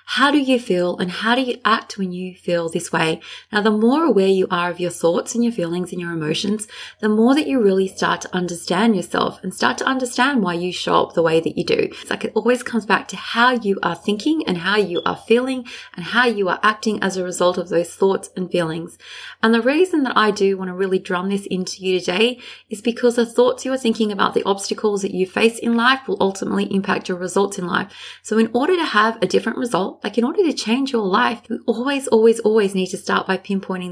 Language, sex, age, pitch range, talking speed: English, female, 20-39, 185-235 Hz, 250 wpm